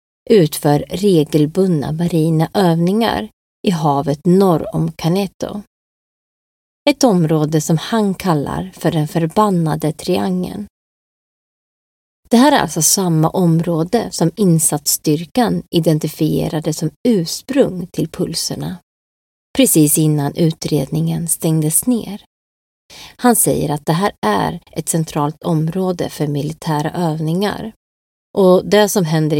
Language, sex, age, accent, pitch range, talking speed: Swedish, female, 30-49, native, 155-190 Hz, 105 wpm